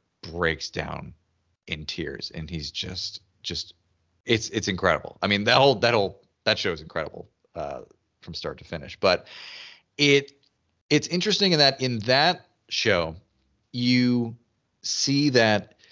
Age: 30-49